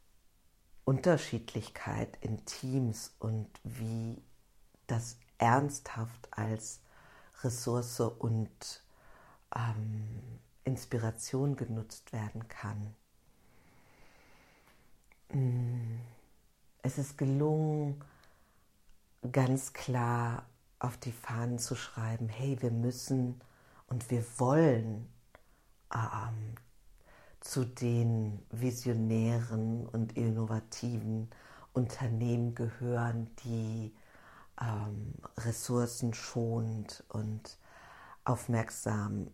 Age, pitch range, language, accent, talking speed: 50-69, 110-125 Hz, German, German, 65 wpm